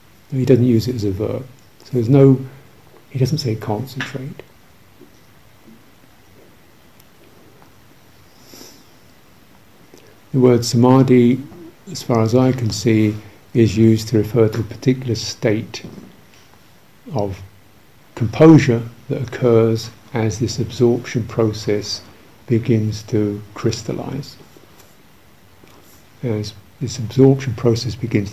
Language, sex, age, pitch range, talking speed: English, male, 50-69, 105-130 Hz, 100 wpm